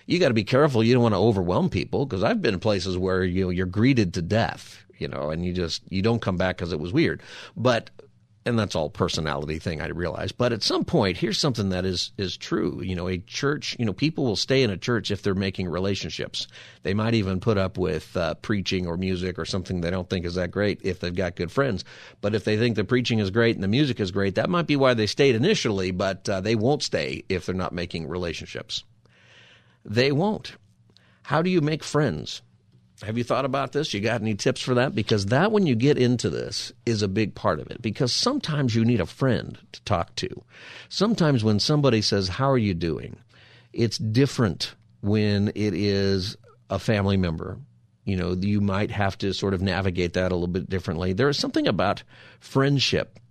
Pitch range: 95-120 Hz